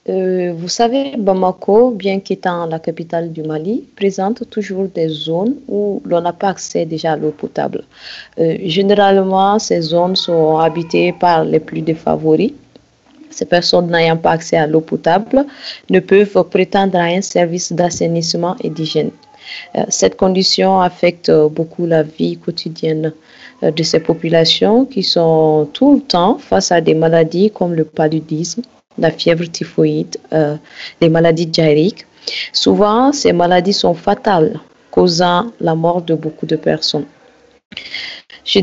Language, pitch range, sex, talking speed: English, 165-195 Hz, female, 145 wpm